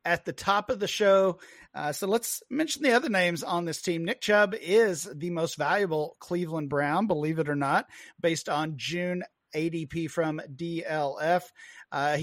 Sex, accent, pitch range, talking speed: male, American, 160-200 Hz, 170 wpm